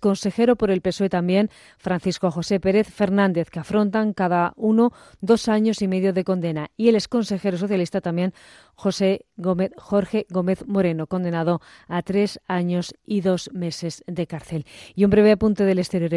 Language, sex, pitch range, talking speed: Spanish, female, 180-210 Hz, 165 wpm